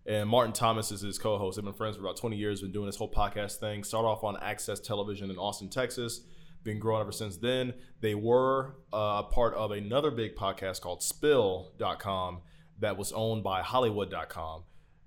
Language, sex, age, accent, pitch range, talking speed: English, male, 20-39, American, 95-120 Hz, 190 wpm